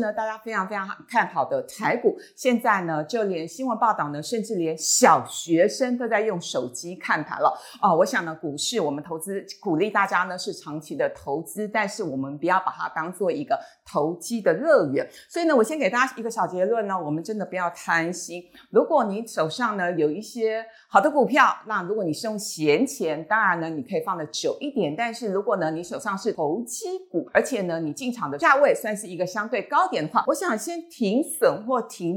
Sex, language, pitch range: female, Chinese, 175-245 Hz